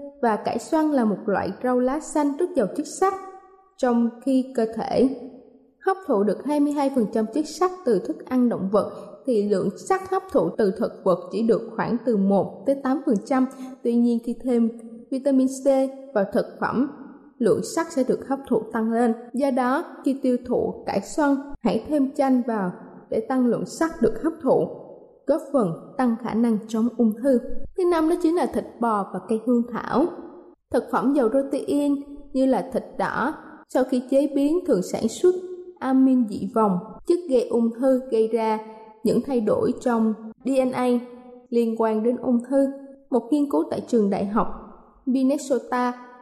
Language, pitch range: Vietnamese, 230-285 Hz